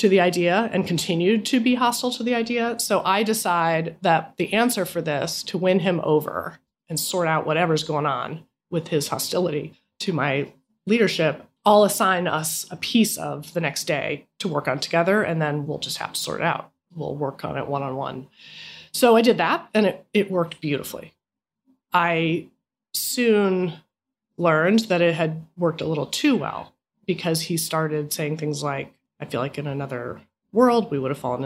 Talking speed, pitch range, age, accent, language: 185 wpm, 160-225 Hz, 30-49, American, English